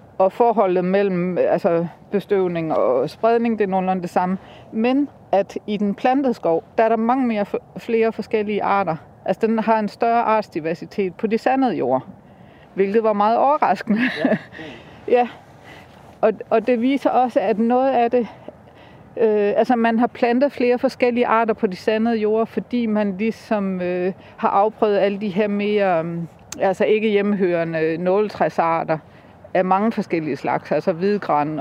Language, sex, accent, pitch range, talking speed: Danish, female, native, 185-225 Hz, 160 wpm